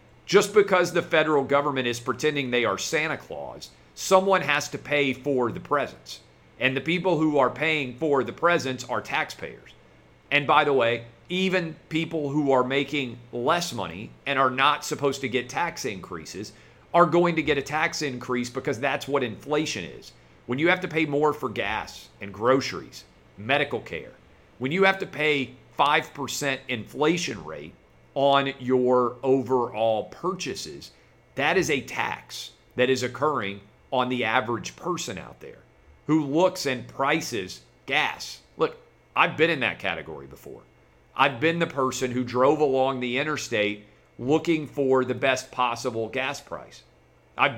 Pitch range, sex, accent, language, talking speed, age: 125-150 Hz, male, American, English, 160 wpm, 50-69